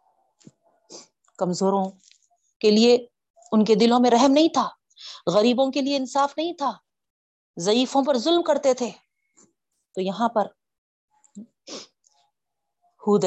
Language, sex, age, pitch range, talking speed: Urdu, female, 40-59, 195-275 Hz, 115 wpm